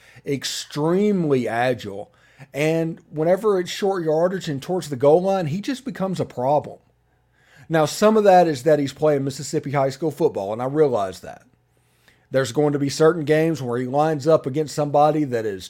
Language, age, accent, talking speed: English, 40-59, American, 180 wpm